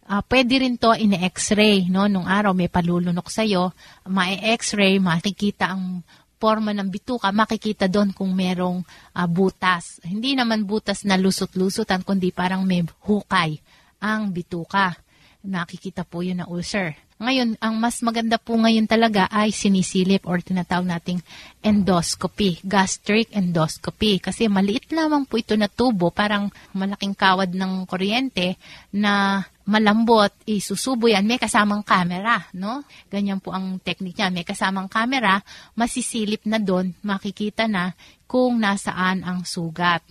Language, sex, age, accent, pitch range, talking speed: Filipino, female, 30-49, native, 185-215 Hz, 140 wpm